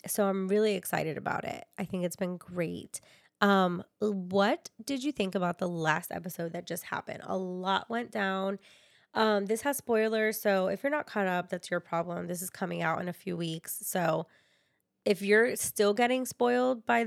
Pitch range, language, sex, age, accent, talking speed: 175-215 Hz, English, female, 20-39, American, 195 wpm